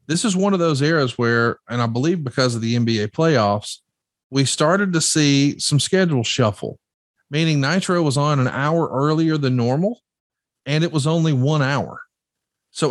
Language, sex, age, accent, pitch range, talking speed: English, male, 40-59, American, 130-165 Hz, 175 wpm